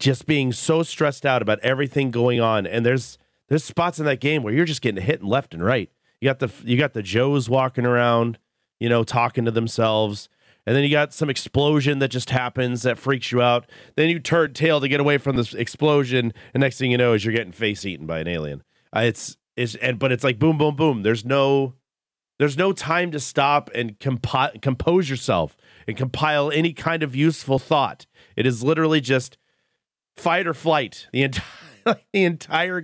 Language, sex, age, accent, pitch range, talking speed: English, male, 40-59, American, 110-145 Hz, 205 wpm